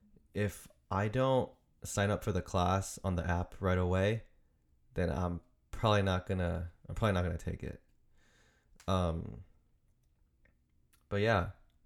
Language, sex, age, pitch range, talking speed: English, male, 20-39, 85-100 Hz, 145 wpm